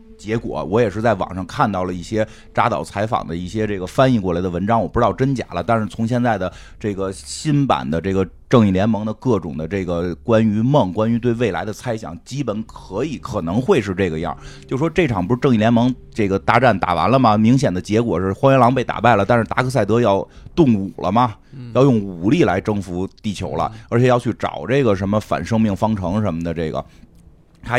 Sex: male